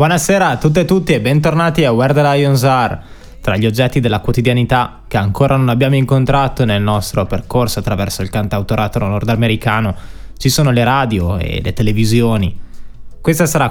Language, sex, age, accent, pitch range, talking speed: Italian, male, 20-39, native, 100-125 Hz, 165 wpm